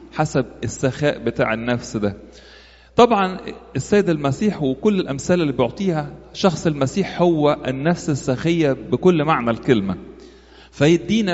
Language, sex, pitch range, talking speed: English, male, 125-175 Hz, 110 wpm